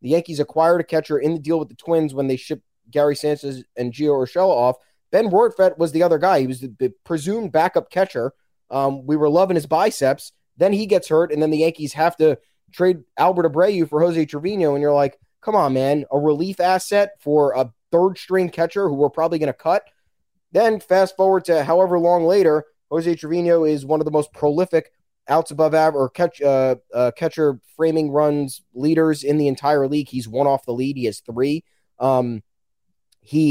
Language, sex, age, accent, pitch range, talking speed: English, male, 20-39, American, 135-170 Hz, 200 wpm